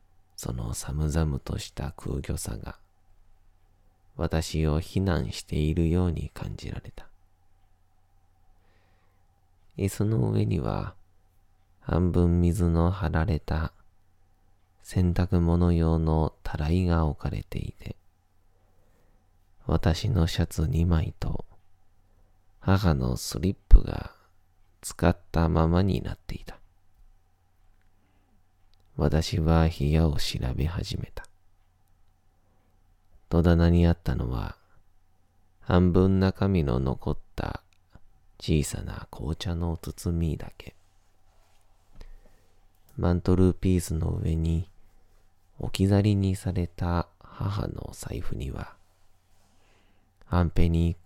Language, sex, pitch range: Japanese, male, 85-95 Hz